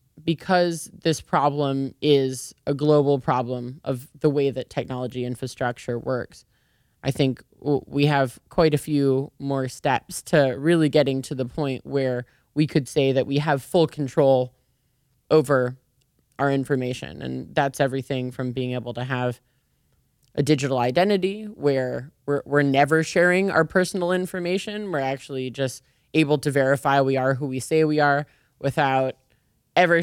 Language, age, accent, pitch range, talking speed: Finnish, 20-39, American, 135-160 Hz, 150 wpm